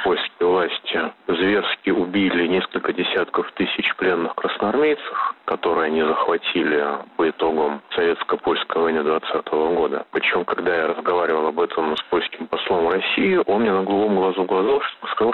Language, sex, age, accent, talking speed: Russian, male, 30-49, native, 135 wpm